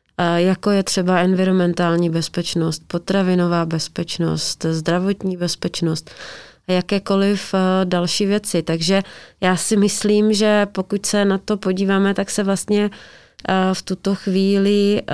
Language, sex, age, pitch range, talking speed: Czech, female, 30-49, 170-200 Hz, 115 wpm